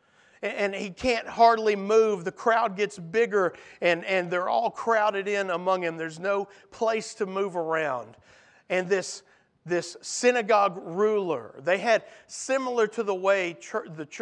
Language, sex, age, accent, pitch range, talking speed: English, male, 50-69, American, 175-225 Hz, 150 wpm